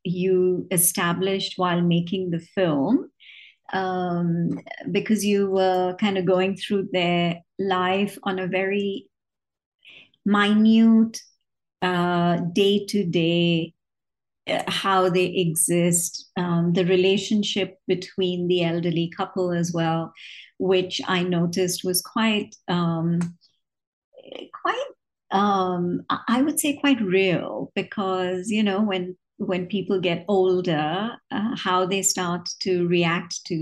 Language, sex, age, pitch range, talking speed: English, male, 50-69, 175-205 Hz, 110 wpm